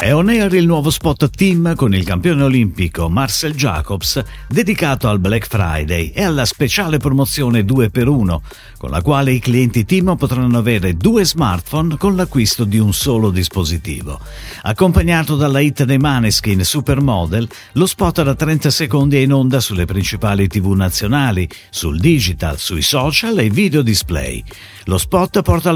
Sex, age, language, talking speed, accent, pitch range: male, 50-69, Italian, 155 wpm, native, 95-150 Hz